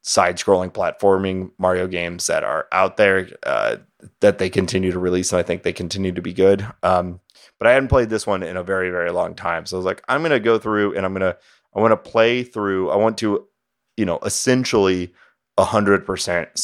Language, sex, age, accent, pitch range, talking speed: English, male, 30-49, American, 90-100 Hz, 215 wpm